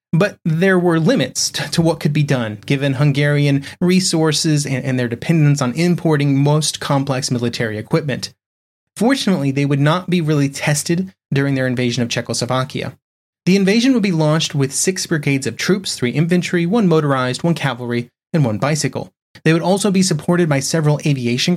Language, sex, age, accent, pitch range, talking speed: English, male, 30-49, American, 135-180 Hz, 170 wpm